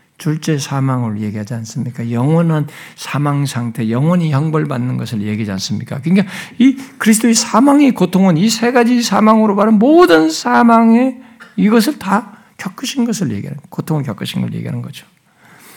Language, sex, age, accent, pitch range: Korean, male, 60-79, native, 160-225 Hz